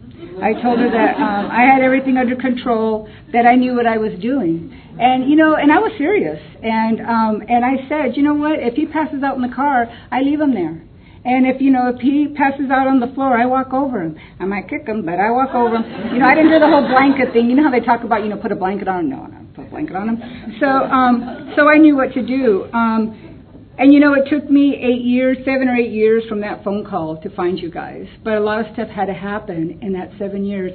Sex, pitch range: female, 200-255 Hz